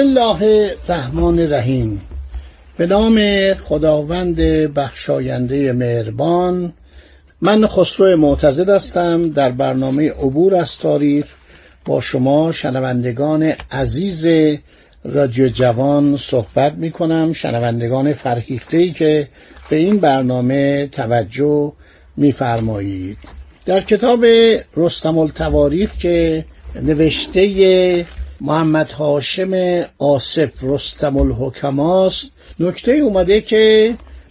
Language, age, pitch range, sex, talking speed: Persian, 60-79, 140-190 Hz, male, 85 wpm